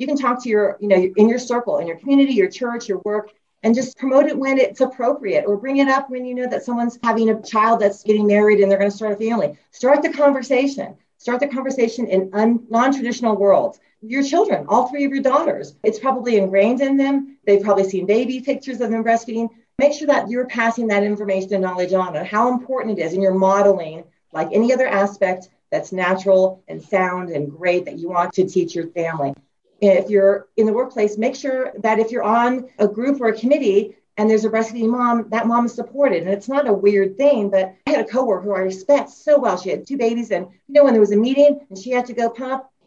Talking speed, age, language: 235 wpm, 40-59, English